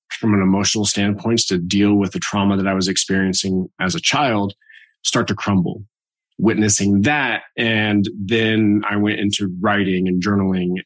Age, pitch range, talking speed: 20-39, 95-110 Hz, 160 wpm